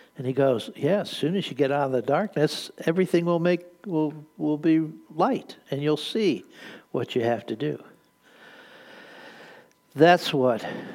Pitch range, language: 120-155 Hz, English